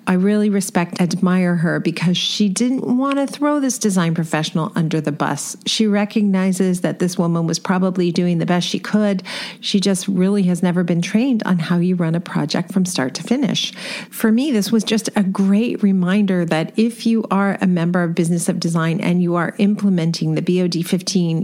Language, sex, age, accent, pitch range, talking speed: English, female, 40-59, American, 175-215 Hz, 200 wpm